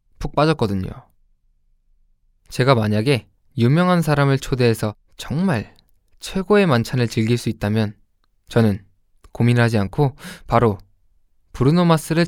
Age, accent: 20-39, native